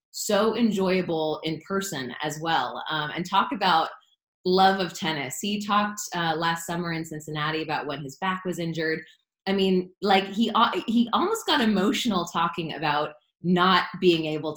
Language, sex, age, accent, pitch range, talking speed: English, female, 20-39, American, 160-200 Hz, 160 wpm